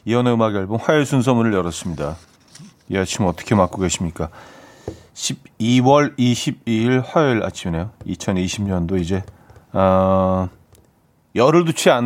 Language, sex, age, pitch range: Korean, male, 30-49, 95-135 Hz